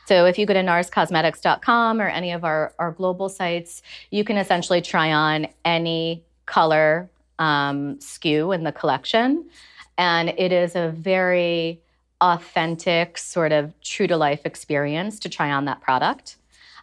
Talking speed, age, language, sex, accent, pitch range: 150 wpm, 30-49, English, female, American, 155-190 Hz